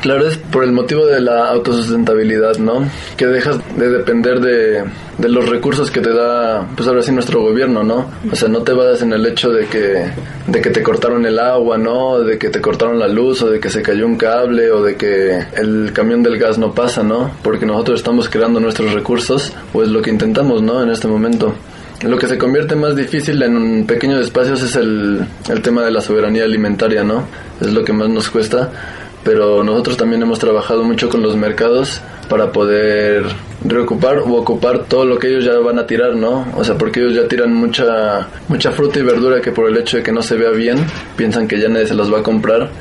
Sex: male